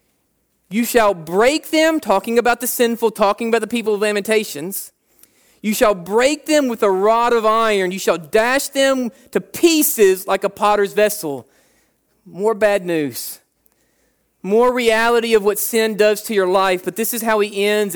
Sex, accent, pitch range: male, American, 200-240 Hz